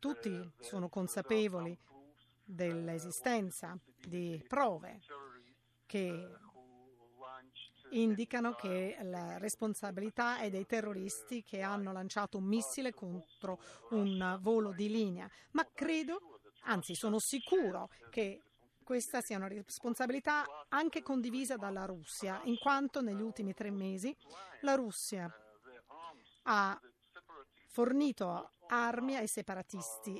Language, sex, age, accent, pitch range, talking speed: Italian, female, 40-59, native, 180-245 Hz, 100 wpm